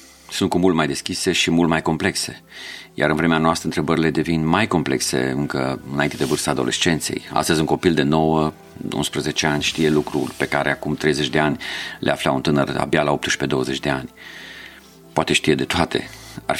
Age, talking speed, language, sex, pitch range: 40-59, 180 wpm, Romanian, male, 70-85 Hz